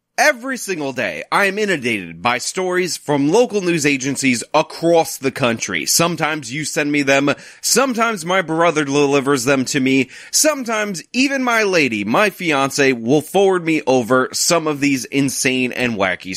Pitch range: 130-195 Hz